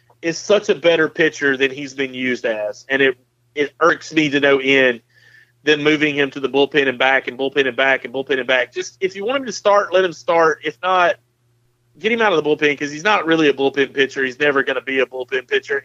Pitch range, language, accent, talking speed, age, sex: 130-185 Hz, English, American, 250 wpm, 30-49, male